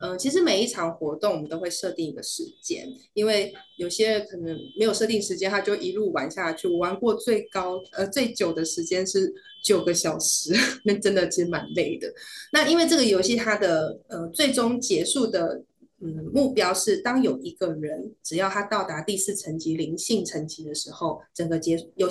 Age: 20-39